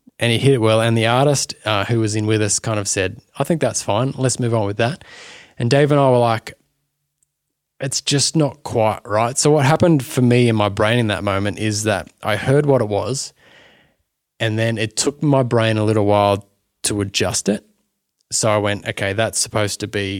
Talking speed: 225 wpm